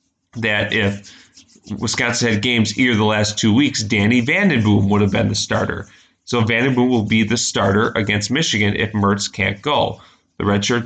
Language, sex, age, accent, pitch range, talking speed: English, male, 30-49, American, 105-120 Hz, 170 wpm